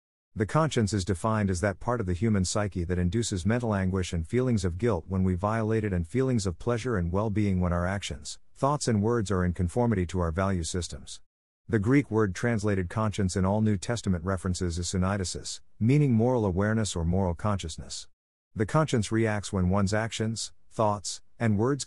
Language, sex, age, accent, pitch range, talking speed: English, male, 50-69, American, 90-115 Hz, 190 wpm